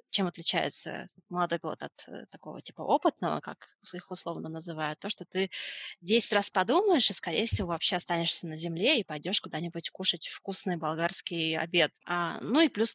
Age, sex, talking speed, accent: 20-39, female, 165 wpm, native